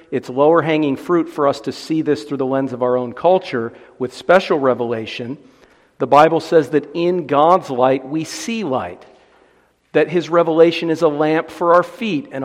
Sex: male